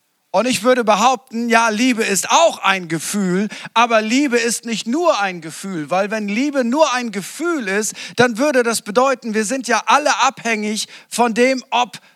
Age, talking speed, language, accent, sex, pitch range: 50-69, 180 wpm, German, German, male, 205-255 Hz